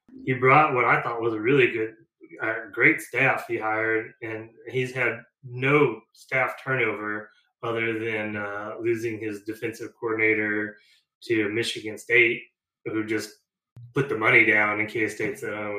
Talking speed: 150 wpm